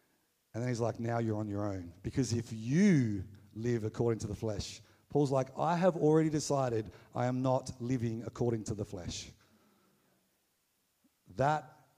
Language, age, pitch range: English, 50-69, 95-115 Hz